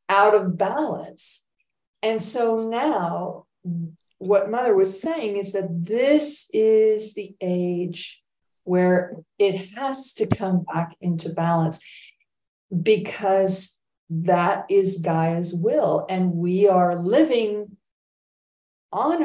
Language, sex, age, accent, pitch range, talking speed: English, female, 50-69, American, 185-230 Hz, 105 wpm